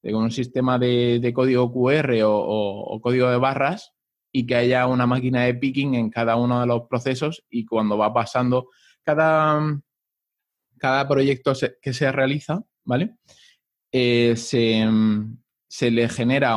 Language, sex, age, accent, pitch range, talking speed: Spanish, male, 20-39, Spanish, 115-135 Hz, 150 wpm